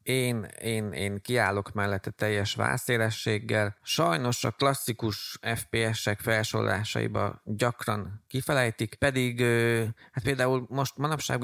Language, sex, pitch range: Hungarian, male, 100-120 Hz